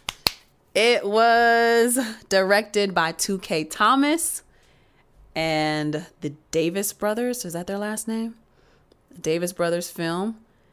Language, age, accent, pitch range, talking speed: English, 30-49, American, 155-205 Hz, 100 wpm